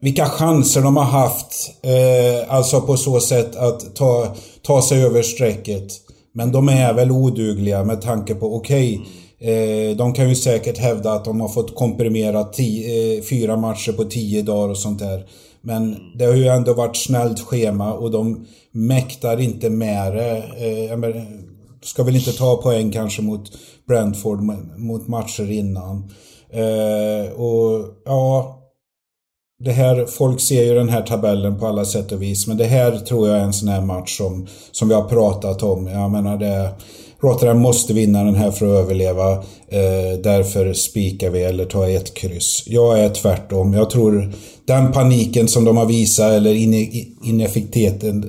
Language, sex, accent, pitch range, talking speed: Swedish, male, native, 100-120 Hz, 160 wpm